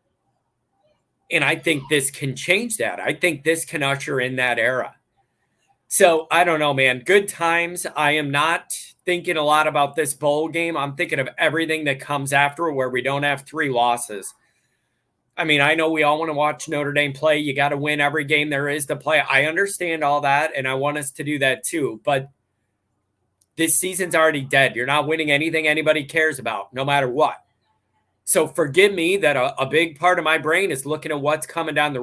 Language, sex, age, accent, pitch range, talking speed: English, male, 30-49, American, 135-160 Hz, 210 wpm